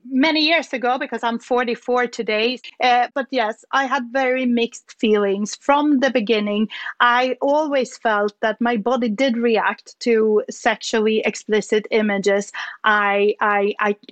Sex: female